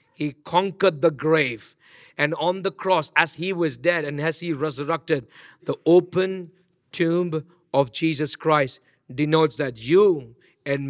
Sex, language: male, English